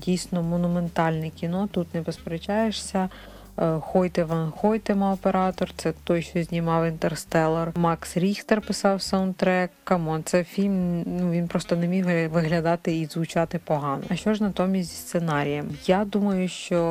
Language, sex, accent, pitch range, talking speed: Ukrainian, female, native, 160-180 Hz, 140 wpm